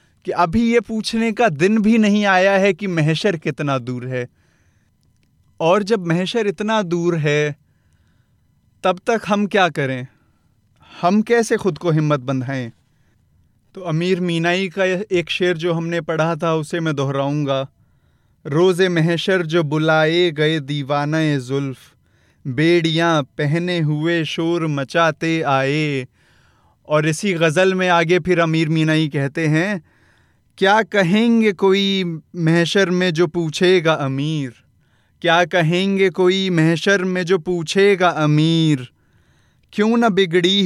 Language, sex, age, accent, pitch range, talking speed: Hindi, male, 30-49, native, 145-180 Hz, 130 wpm